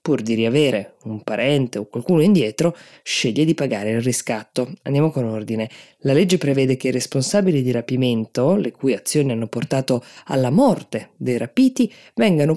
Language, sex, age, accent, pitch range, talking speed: Italian, female, 20-39, native, 125-155 Hz, 160 wpm